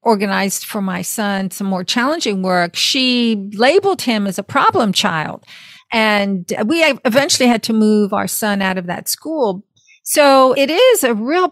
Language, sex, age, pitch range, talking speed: English, female, 50-69, 205-260 Hz, 165 wpm